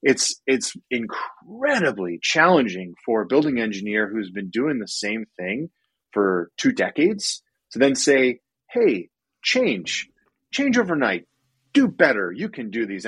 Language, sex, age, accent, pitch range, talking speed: English, male, 30-49, American, 90-115 Hz, 140 wpm